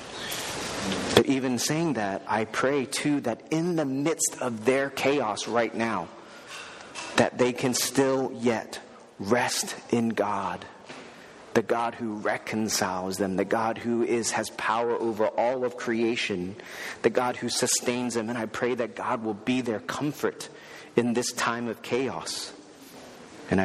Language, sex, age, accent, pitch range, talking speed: English, male, 40-59, American, 105-125 Hz, 150 wpm